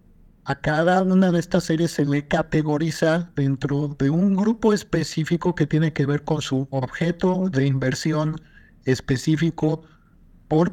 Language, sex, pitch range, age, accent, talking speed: Spanish, male, 140-175 Hz, 50-69, Mexican, 140 wpm